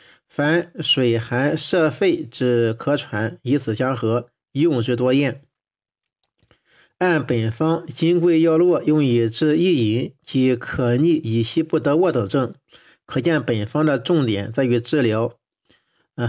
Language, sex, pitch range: Chinese, male, 120-160 Hz